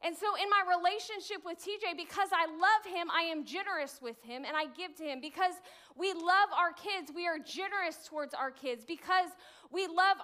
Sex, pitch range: female, 285-370 Hz